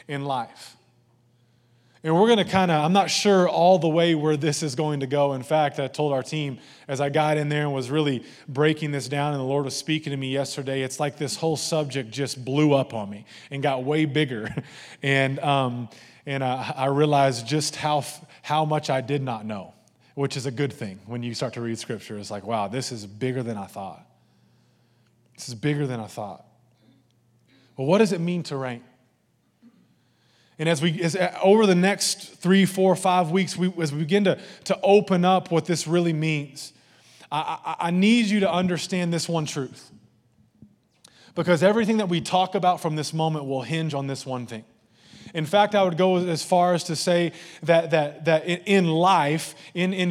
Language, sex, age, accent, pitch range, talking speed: English, male, 20-39, American, 135-175 Hz, 205 wpm